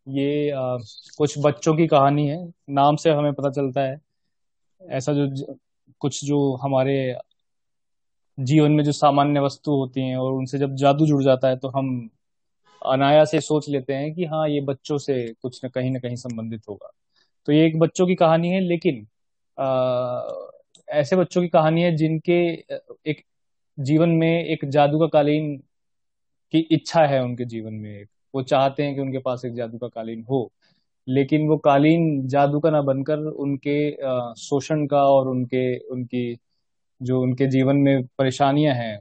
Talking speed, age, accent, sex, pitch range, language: 170 wpm, 20-39, native, male, 130-155 Hz, Hindi